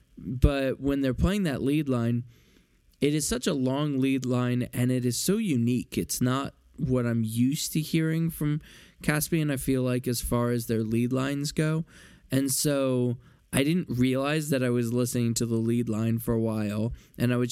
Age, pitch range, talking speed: 10-29, 115-135 Hz, 195 wpm